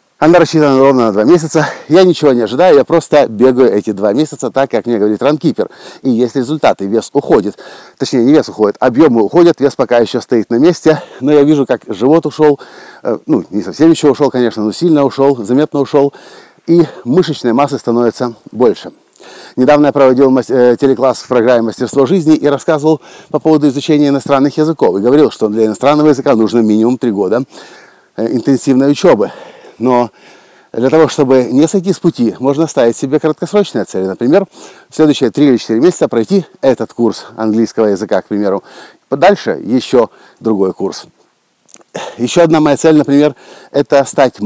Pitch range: 120-150 Hz